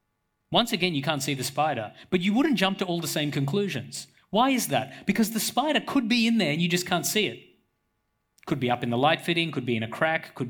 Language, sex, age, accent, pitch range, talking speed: English, male, 30-49, Australian, 115-170 Hz, 255 wpm